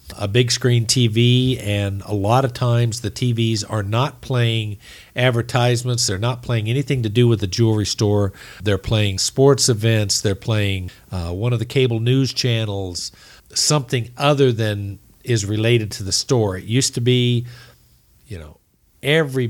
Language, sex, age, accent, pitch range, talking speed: English, male, 50-69, American, 105-130 Hz, 165 wpm